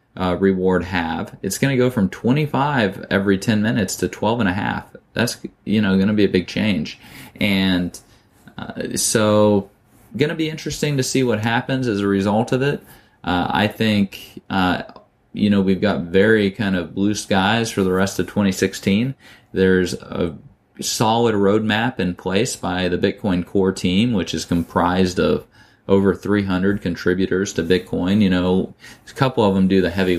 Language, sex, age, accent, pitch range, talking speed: English, male, 20-39, American, 95-115 Hz, 175 wpm